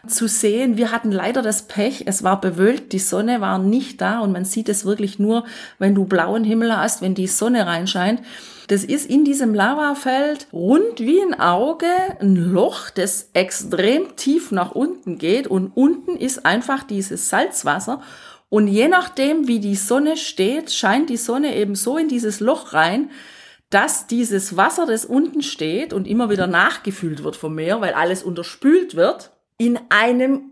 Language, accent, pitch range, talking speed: German, German, 195-255 Hz, 175 wpm